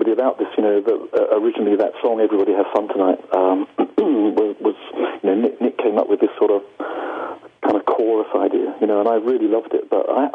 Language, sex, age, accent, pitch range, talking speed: English, male, 40-59, British, 330-440 Hz, 215 wpm